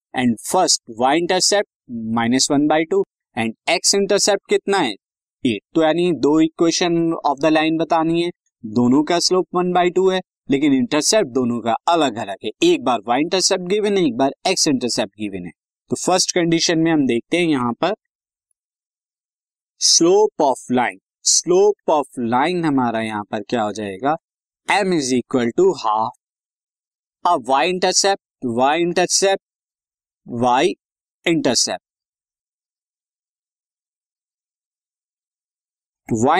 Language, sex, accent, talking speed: Hindi, male, native, 130 wpm